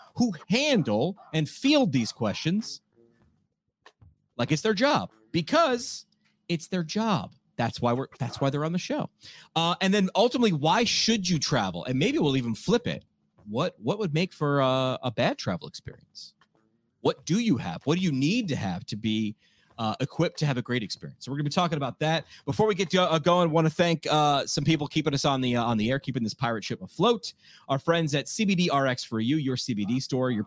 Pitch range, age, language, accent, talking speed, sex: 130-175 Hz, 30-49, English, American, 215 wpm, male